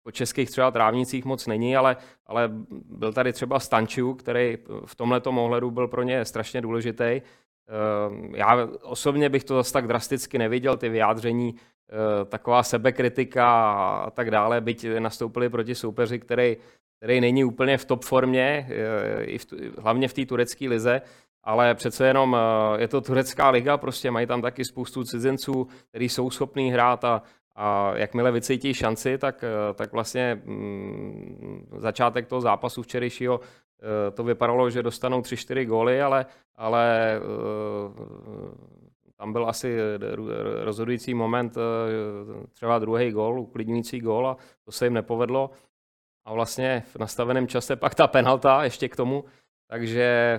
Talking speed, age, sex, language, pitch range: 140 wpm, 30-49, male, Czech, 115-130 Hz